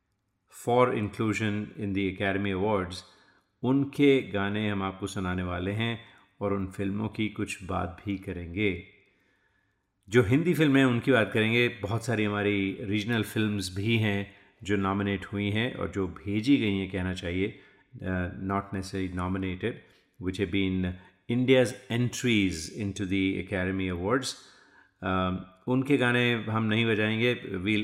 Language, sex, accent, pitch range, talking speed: Hindi, male, native, 95-120 Hz, 140 wpm